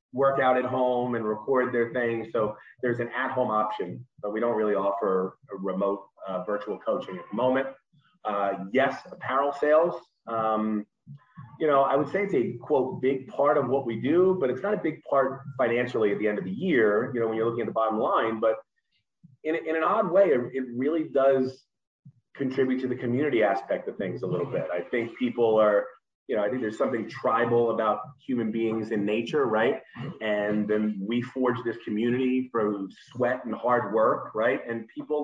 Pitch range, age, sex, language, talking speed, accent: 110-135 Hz, 30-49, male, English, 205 wpm, American